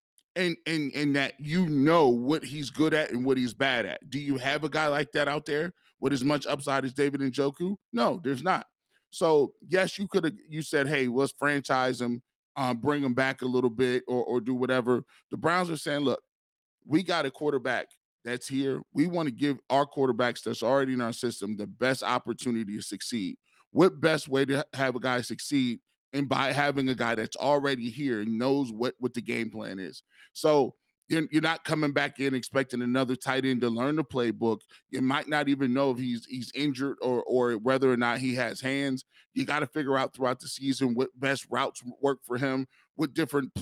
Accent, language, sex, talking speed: American, English, male, 215 wpm